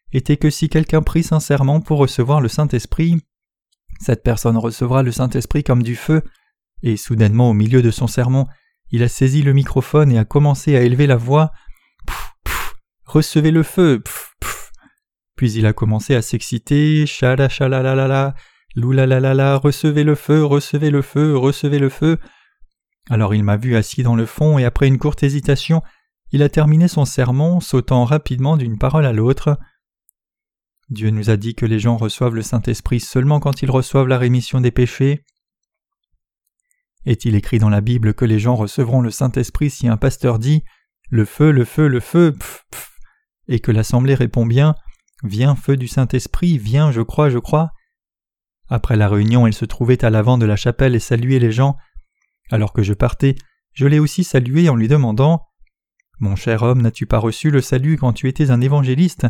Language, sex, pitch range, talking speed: French, male, 120-150 Hz, 185 wpm